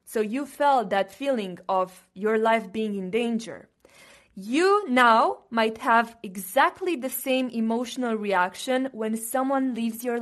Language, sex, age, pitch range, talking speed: English, female, 20-39, 195-255 Hz, 140 wpm